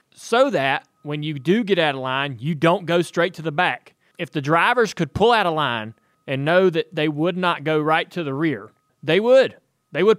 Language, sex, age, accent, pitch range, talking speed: English, male, 30-49, American, 145-180 Hz, 230 wpm